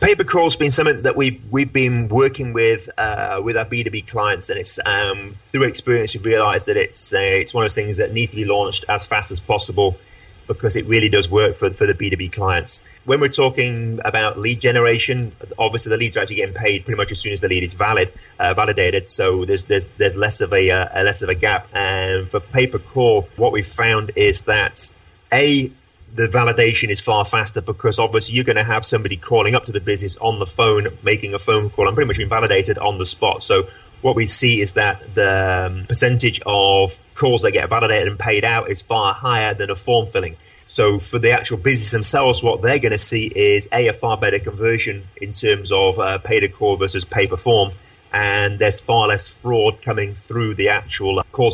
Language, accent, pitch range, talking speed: English, British, 100-125 Hz, 220 wpm